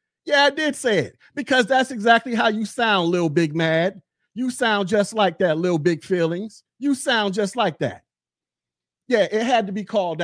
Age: 40-59